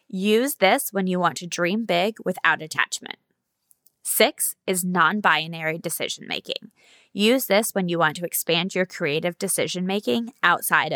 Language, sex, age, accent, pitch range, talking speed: English, female, 20-39, American, 175-225 Hz, 135 wpm